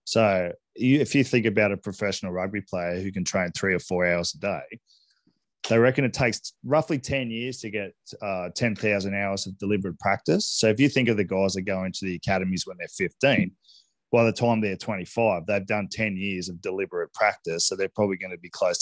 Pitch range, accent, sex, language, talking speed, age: 95-120 Hz, Australian, male, English, 210 wpm, 20-39